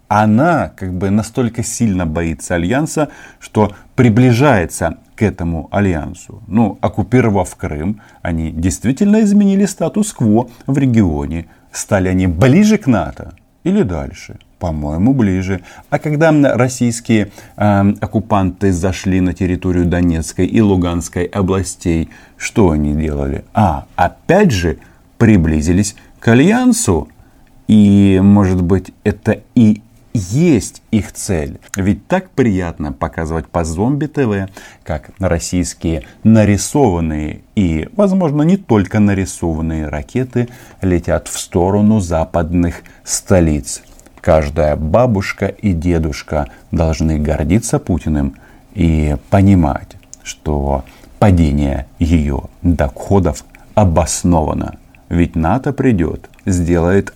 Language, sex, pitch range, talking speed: Russian, male, 85-110 Hz, 100 wpm